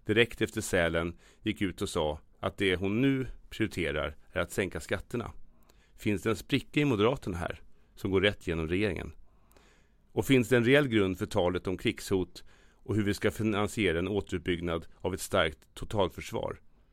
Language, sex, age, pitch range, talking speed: Swedish, male, 30-49, 90-125 Hz, 175 wpm